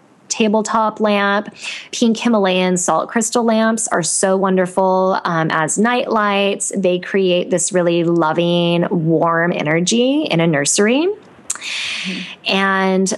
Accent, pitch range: American, 180-235 Hz